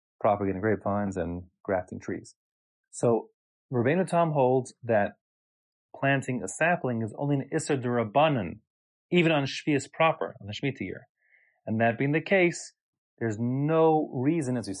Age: 30-49